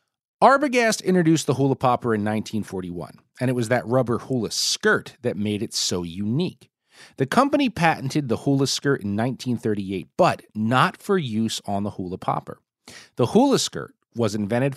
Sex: male